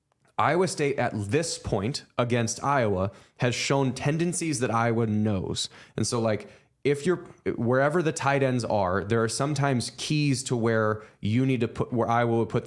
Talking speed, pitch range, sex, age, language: 175 wpm, 105-130 Hz, male, 20-39, English